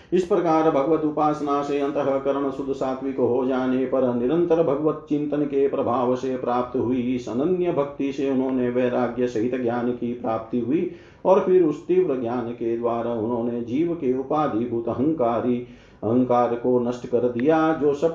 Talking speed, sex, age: 160 wpm, male, 50-69